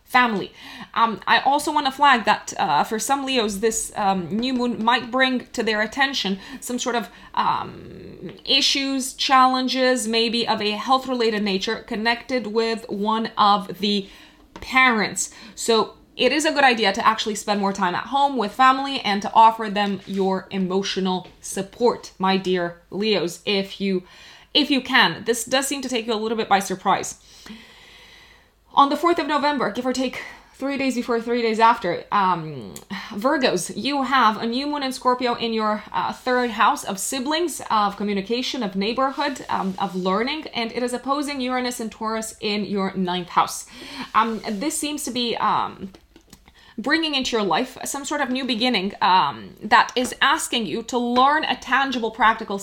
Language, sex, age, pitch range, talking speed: English, female, 20-39, 205-260 Hz, 175 wpm